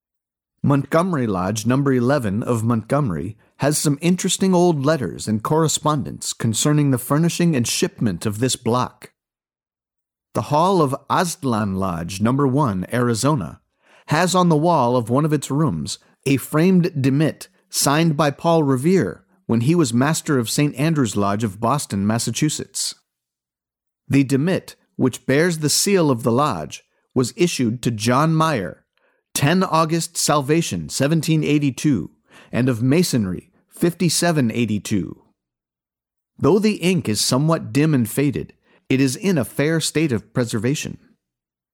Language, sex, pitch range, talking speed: English, male, 115-160 Hz, 135 wpm